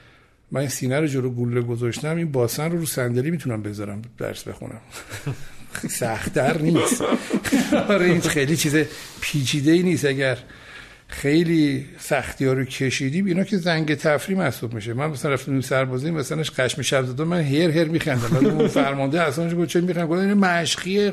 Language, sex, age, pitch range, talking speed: Persian, male, 60-79, 130-175 Hz, 160 wpm